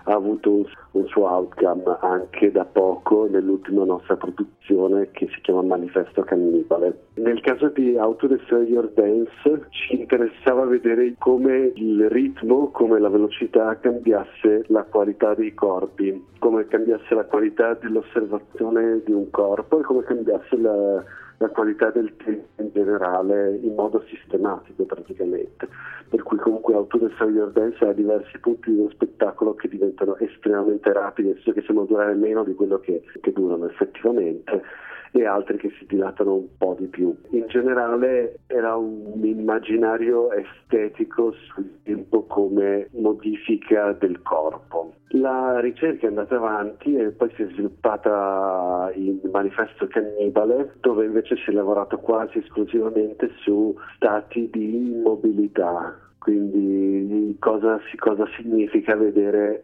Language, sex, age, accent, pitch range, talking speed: Italian, male, 50-69, native, 100-125 Hz, 135 wpm